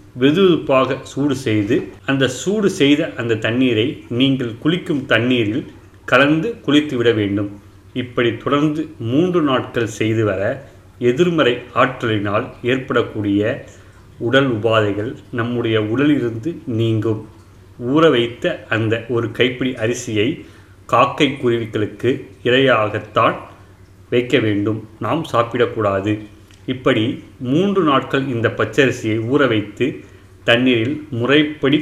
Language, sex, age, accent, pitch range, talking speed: Tamil, male, 30-49, native, 110-140 Hz, 95 wpm